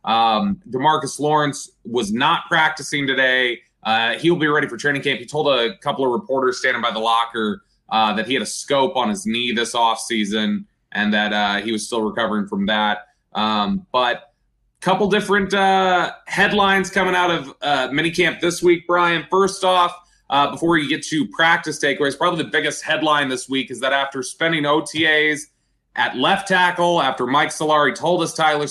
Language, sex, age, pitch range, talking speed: English, male, 20-39, 125-170 Hz, 185 wpm